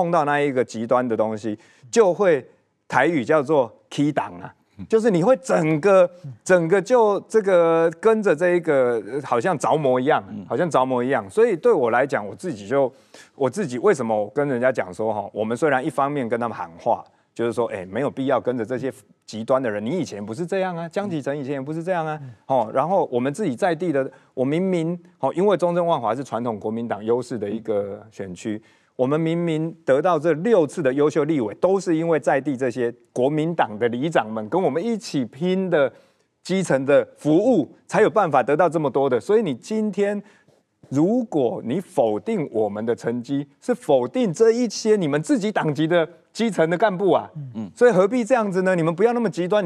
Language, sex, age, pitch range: Chinese, male, 30-49, 130-195 Hz